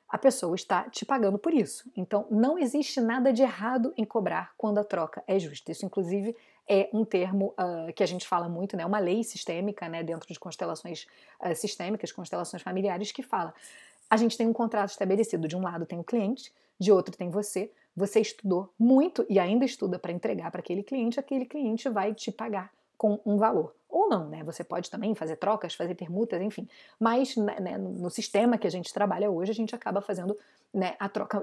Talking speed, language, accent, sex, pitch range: 200 wpm, Portuguese, Brazilian, female, 185-230 Hz